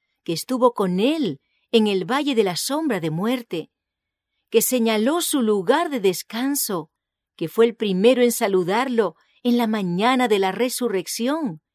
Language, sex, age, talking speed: English, female, 40-59, 155 wpm